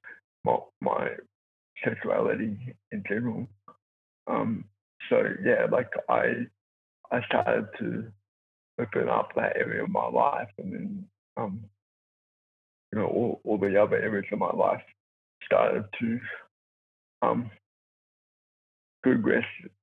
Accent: American